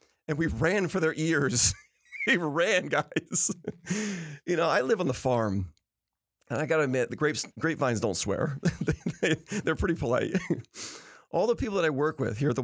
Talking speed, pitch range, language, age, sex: 190 wpm, 130-200 Hz, English, 40-59, male